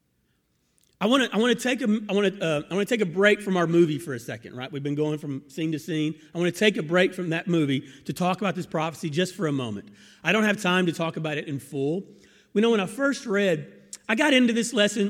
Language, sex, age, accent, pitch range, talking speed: English, male, 40-59, American, 160-210 Hz, 250 wpm